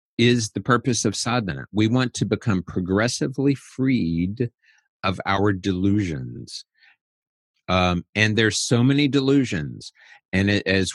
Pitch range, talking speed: 95-115 Hz, 125 wpm